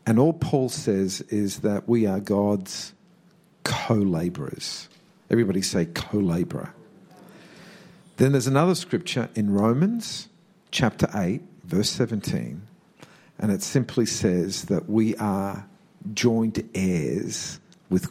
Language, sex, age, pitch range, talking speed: English, male, 50-69, 105-170 Hz, 115 wpm